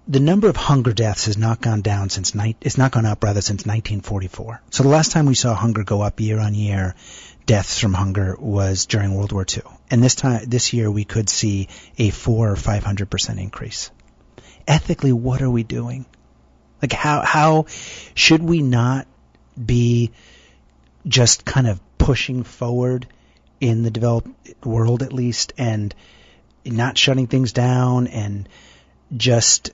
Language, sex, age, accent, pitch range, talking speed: English, male, 30-49, American, 100-120 Hz, 165 wpm